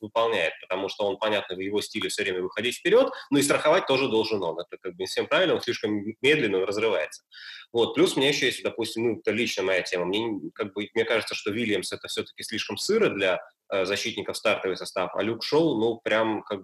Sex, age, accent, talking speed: male, 20-39, native, 225 wpm